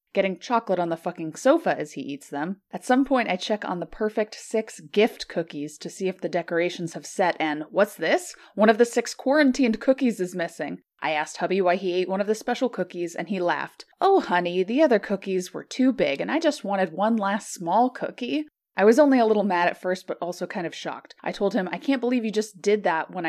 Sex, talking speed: female, 240 wpm